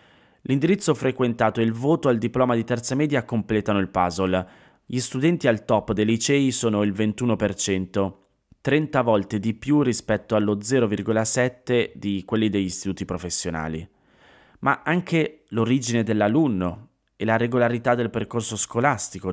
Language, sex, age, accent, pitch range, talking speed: Italian, male, 20-39, native, 95-120 Hz, 135 wpm